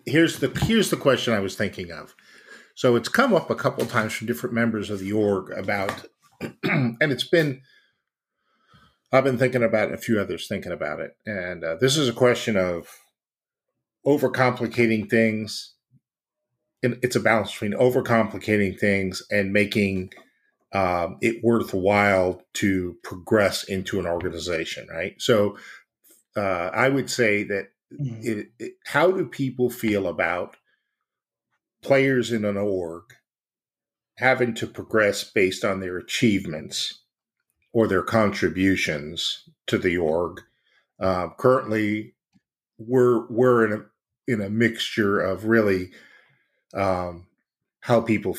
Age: 50-69